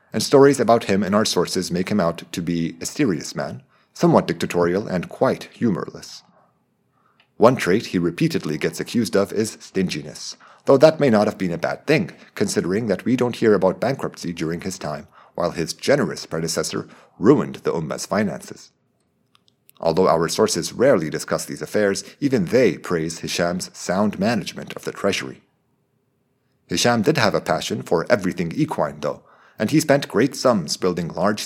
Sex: male